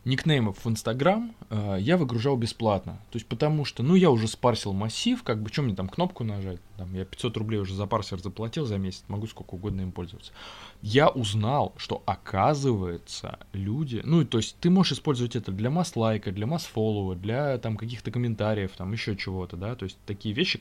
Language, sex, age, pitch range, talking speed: Russian, male, 20-39, 100-120 Hz, 195 wpm